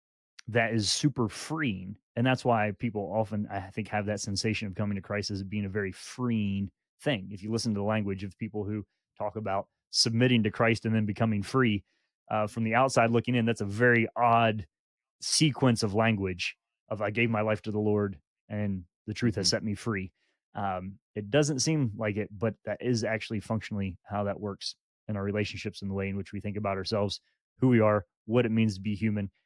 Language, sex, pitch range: English, male, 105-120 Hz